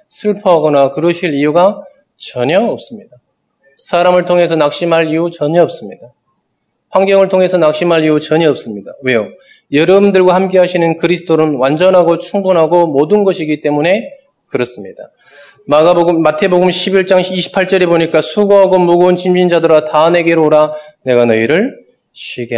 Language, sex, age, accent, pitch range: Korean, male, 20-39, native, 140-180 Hz